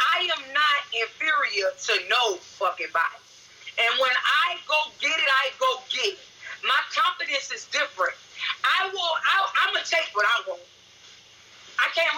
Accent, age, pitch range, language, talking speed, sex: American, 30-49, 255-330 Hz, English, 165 wpm, female